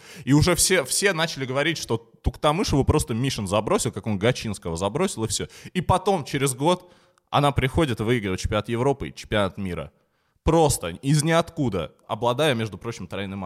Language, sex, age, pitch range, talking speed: Russian, male, 20-39, 100-140 Hz, 160 wpm